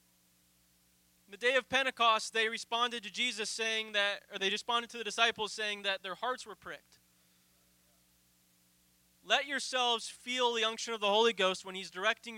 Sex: male